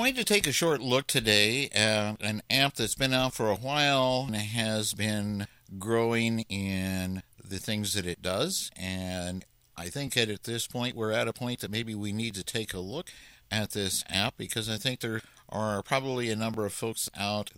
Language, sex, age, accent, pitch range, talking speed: English, male, 60-79, American, 95-125 Hz, 200 wpm